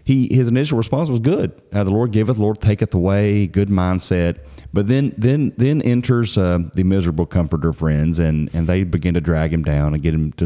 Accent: American